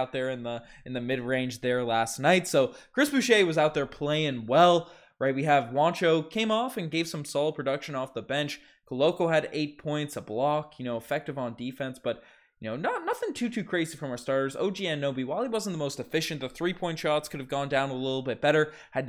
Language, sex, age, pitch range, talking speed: English, male, 20-39, 130-165 Hz, 230 wpm